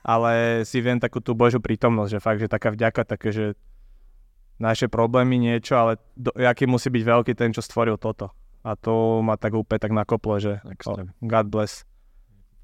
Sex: male